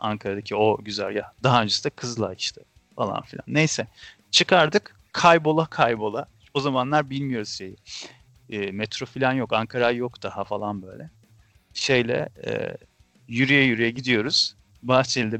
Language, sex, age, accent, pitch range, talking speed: Turkish, male, 40-59, native, 110-145 Hz, 135 wpm